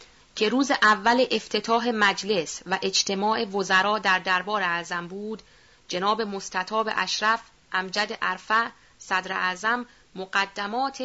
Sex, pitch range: female, 195-235 Hz